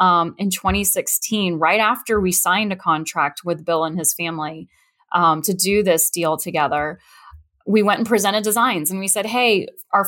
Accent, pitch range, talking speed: American, 180-230 Hz, 175 wpm